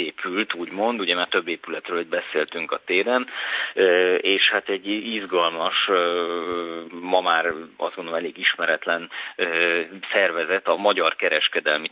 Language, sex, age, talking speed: Hungarian, male, 30-49, 115 wpm